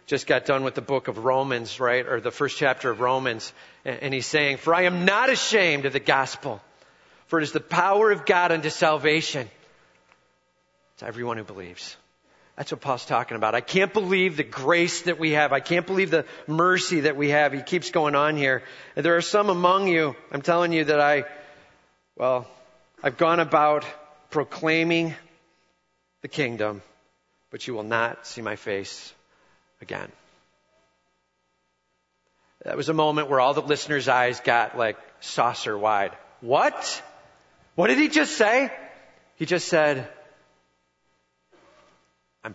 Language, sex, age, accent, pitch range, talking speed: English, male, 40-59, American, 125-165 Hz, 160 wpm